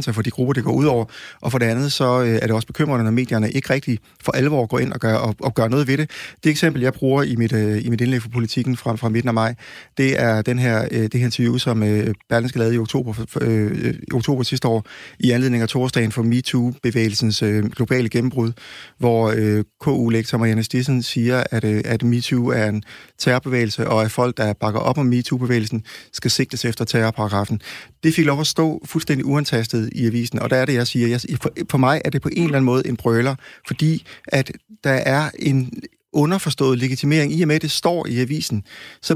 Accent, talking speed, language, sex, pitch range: native, 225 wpm, Danish, male, 115-135 Hz